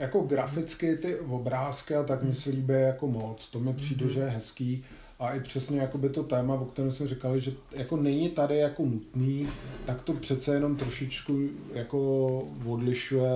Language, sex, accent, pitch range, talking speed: Czech, male, native, 120-145 Hz, 185 wpm